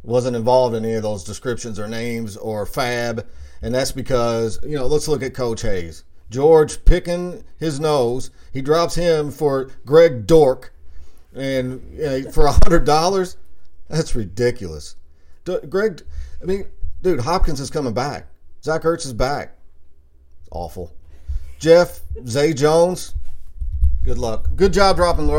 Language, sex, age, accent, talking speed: English, male, 40-59, American, 135 wpm